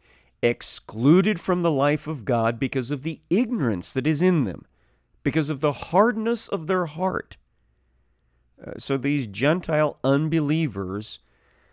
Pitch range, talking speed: 95-135 Hz, 135 wpm